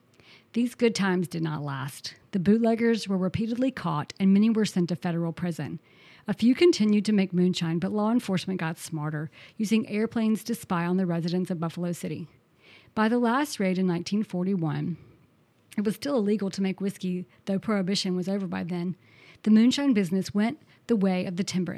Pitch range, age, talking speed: 170-215 Hz, 40-59, 185 wpm